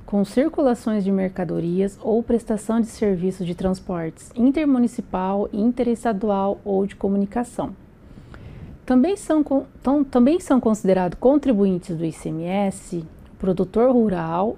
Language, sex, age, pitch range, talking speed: Portuguese, female, 40-59, 190-245 Hz, 105 wpm